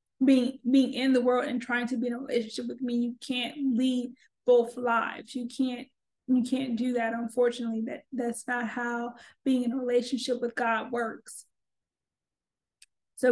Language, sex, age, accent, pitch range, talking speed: English, female, 20-39, American, 235-255 Hz, 170 wpm